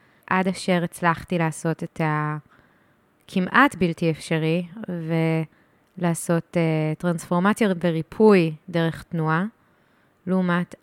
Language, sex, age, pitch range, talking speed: Hebrew, female, 20-39, 165-205 Hz, 80 wpm